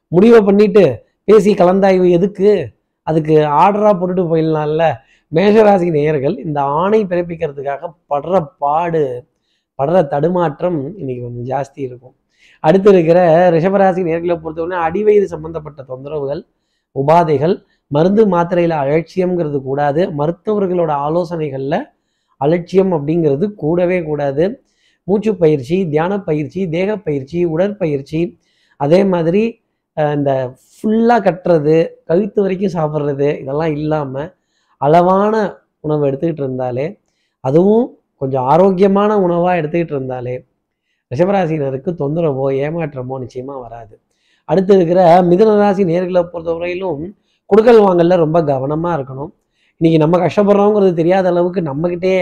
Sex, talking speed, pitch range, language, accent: male, 100 wpm, 145-185 Hz, Tamil, native